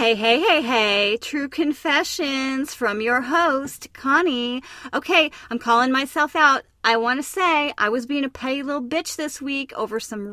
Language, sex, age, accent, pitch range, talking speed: English, female, 30-49, American, 220-295 Hz, 175 wpm